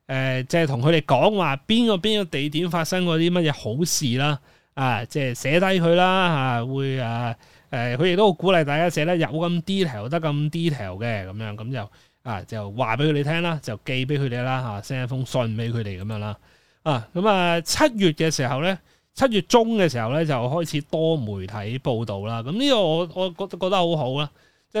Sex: male